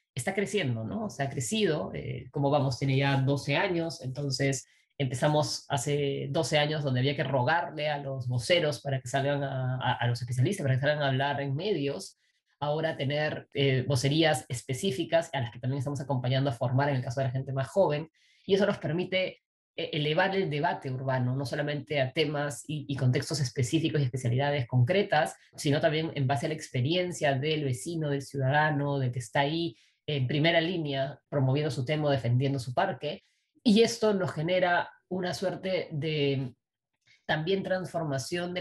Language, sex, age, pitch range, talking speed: Spanish, female, 20-39, 135-165 Hz, 175 wpm